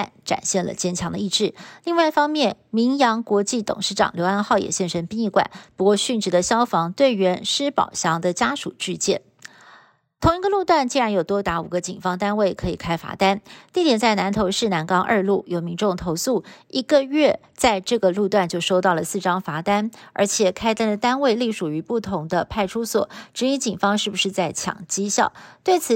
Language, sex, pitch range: Chinese, female, 185-235 Hz